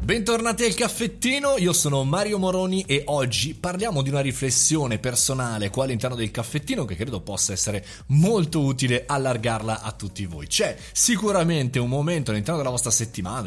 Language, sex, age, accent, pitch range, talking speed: Italian, male, 30-49, native, 110-155 Hz, 160 wpm